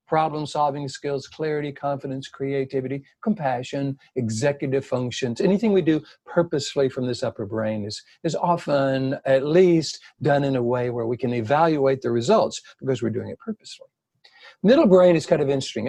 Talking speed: 160 wpm